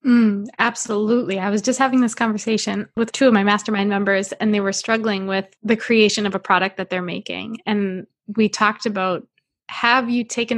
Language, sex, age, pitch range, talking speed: English, female, 20-39, 200-245 Hz, 195 wpm